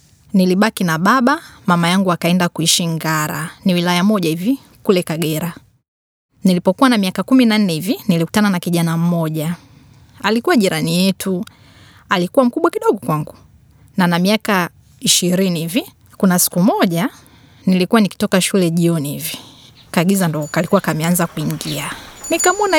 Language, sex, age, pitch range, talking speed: Swahili, female, 20-39, 170-235 Hz, 125 wpm